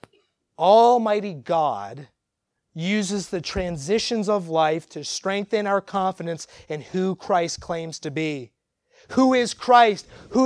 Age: 30-49